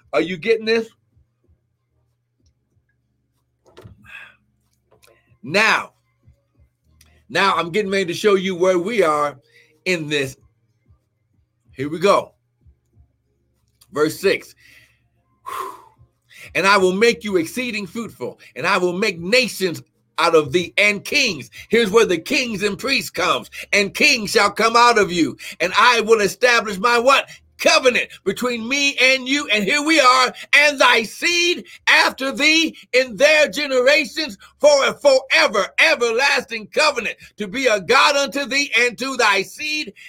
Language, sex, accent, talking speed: English, male, American, 135 wpm